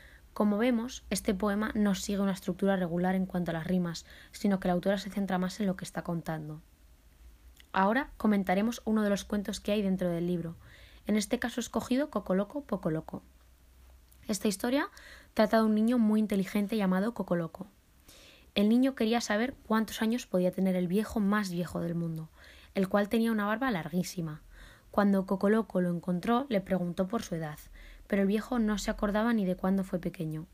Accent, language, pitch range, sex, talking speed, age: Spanish, Spanish, 175-215 Hz, female, 185 wpm, 20-39